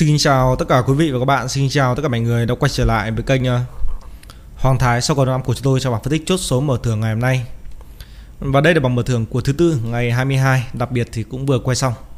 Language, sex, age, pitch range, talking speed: Vietnamese, male, 20-39, 115-135 Hz, 285 wpm